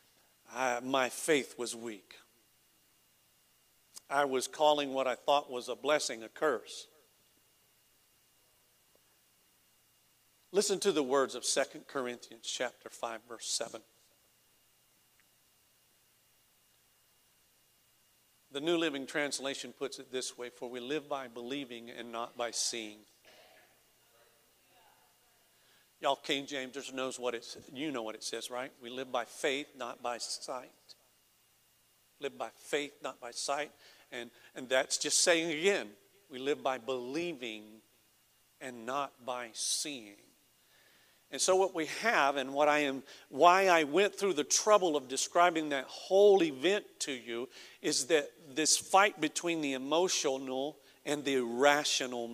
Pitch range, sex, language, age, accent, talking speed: 125-150 Hz, male, English, 50-69, American, 130 wpm